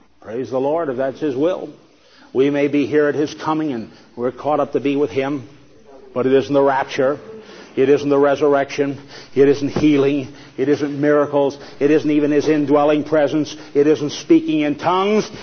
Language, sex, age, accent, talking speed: English, male, 50-69, American, 185 wpm